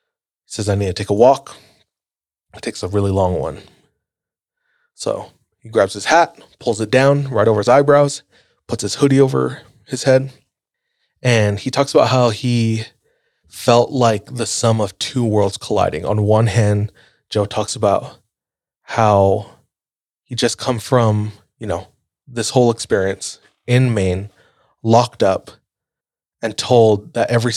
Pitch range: 105-125 Hz